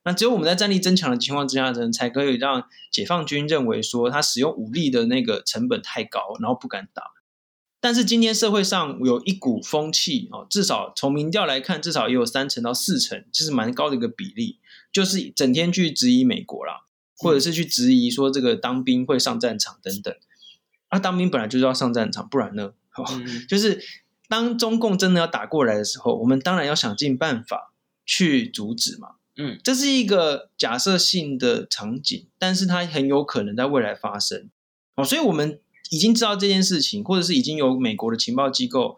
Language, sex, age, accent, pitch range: Chinese, male, 20-39, native, 135-230 Hz